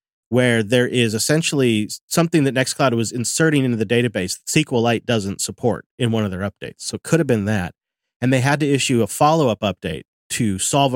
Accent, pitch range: American, 105-140 Hz